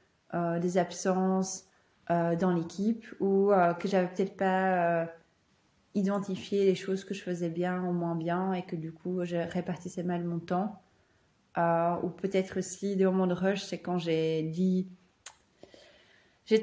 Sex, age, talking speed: female, 20-39, 160 wpm